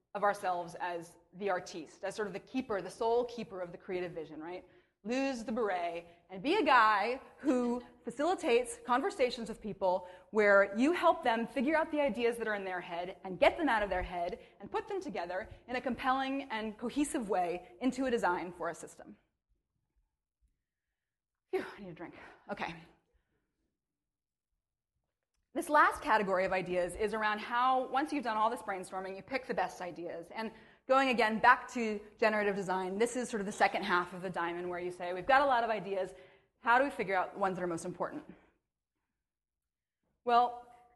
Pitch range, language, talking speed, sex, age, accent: 185-250 Hz, English, 190 wpm, female, 20-39, American